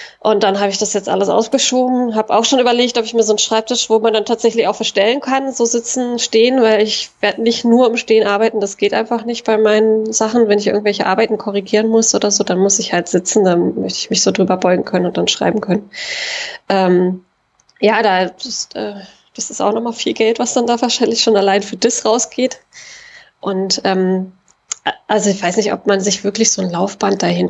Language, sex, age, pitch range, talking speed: German, female, 20-39, 200-235 Hz, 225 wpm